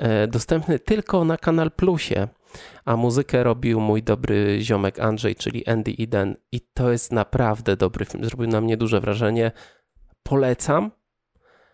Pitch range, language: 115-145 Hz, Polish